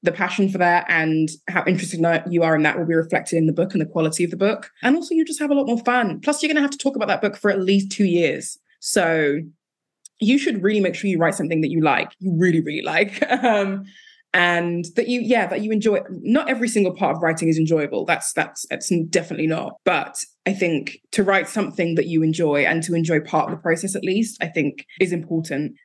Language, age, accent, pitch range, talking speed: English, 20-39, British, 160-205 Hz, 245 wpm